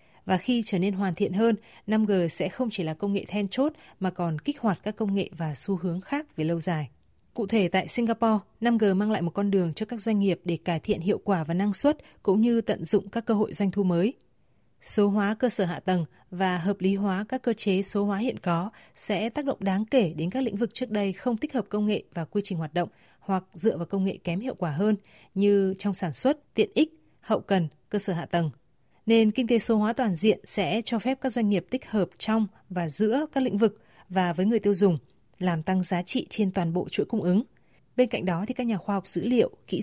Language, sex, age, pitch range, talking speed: Vietnamese, female, 20-39, 185-225 Hz, 255 wpm